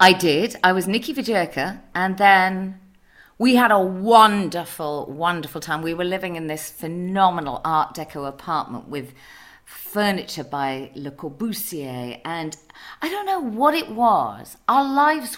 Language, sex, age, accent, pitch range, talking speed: English, female, 40-59, British, 170-250 Hz, 145 wpm